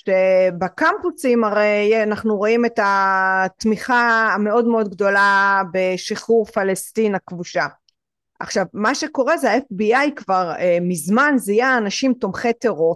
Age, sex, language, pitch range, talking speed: 30-49, female, Hebrew, 200-265 Hz, 105 wpm